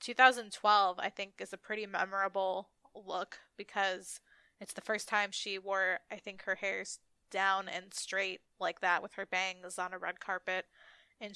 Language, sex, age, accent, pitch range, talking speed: English, female, 20-39, American, 190-215 Hz, 170 wpm